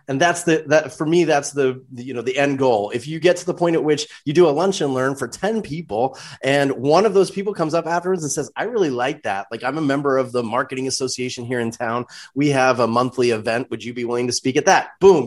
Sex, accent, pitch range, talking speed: male, American, 125-155 Hz, 270 wpm